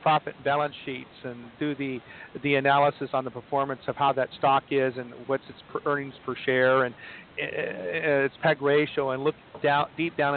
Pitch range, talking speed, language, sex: 130-145 Hz, 190 wpm, English, male